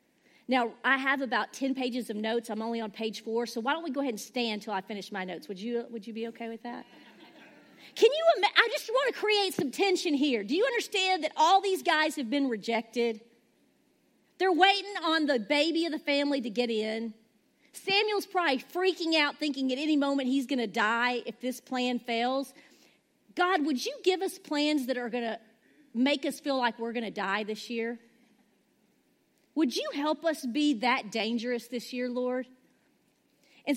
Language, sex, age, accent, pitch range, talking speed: English, female, 40-59, American, 240-305 Hz, 200 wpm